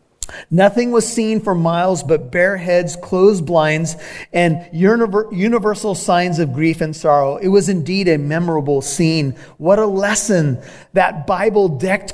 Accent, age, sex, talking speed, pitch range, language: American, 30-49, male, 140 wpm, 155-195 Hz, English